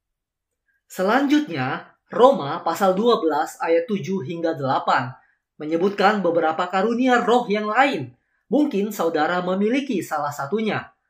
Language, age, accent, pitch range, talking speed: Indonesian, 20-39, native, 165-245 Hz, 105 wpm